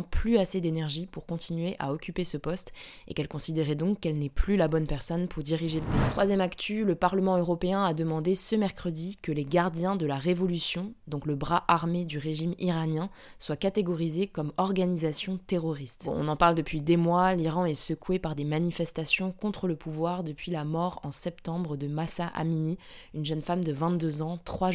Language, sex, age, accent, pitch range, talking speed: French, female, 20-39, French, 155-185 Hz, 195 wpm